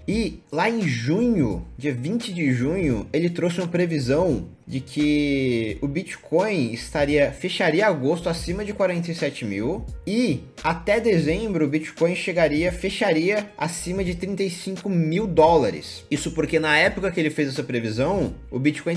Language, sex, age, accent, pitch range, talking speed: Portuguese, male, 20-39, Brazilian, 135-175 Hz, 145 wpm